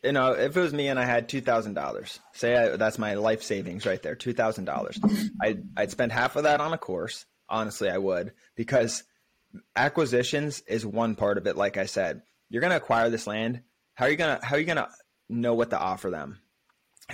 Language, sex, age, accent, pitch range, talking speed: English, male, 20-39, American, 105-125 Hz, 200 wpm